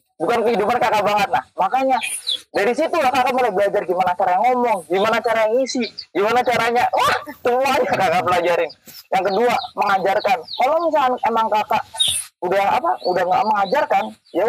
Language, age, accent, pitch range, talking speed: Indonesian, 20-39, native, 195-255 Hz, 155 wpm